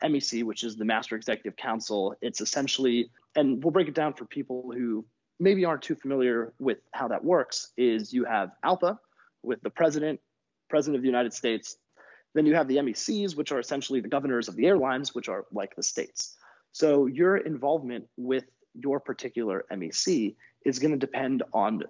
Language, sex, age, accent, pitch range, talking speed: English, male, 30-49, American, 120-145 Hz, 185 wpm